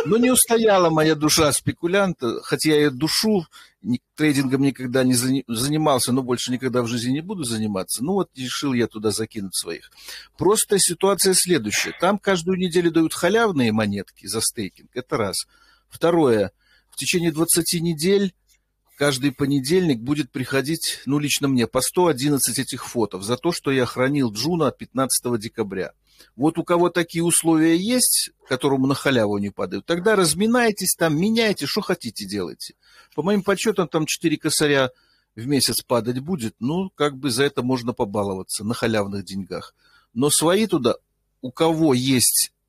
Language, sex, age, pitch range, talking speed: Russian, male, 50-69, 120-170 Hz, 155 wpm